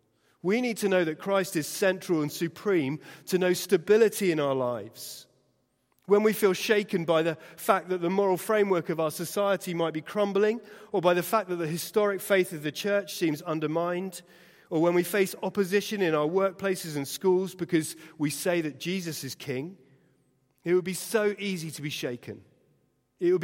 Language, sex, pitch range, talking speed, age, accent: English, male, 135-180 Hz, 185 wpm, 40-59, British